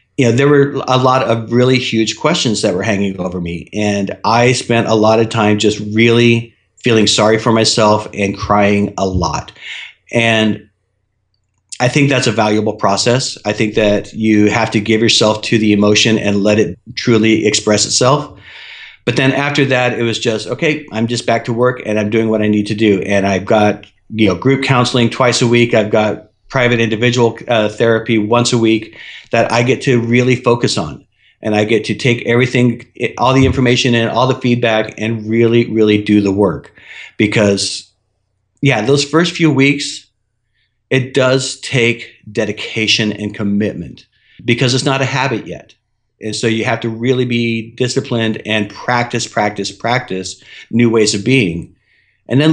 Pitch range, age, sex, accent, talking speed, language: 105-125 Hz, 40-59, male, American, 180 wpm, English